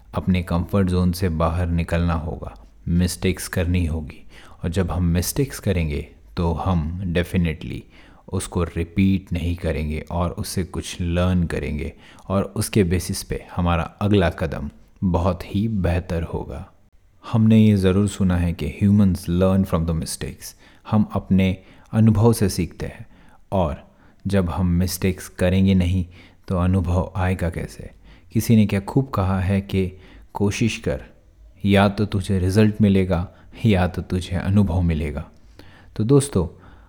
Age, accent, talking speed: 30-49, native, 140 wpm